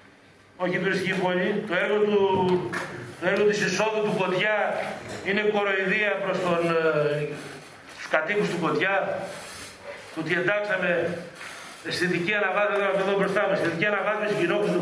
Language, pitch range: Greek, 195-245 Hz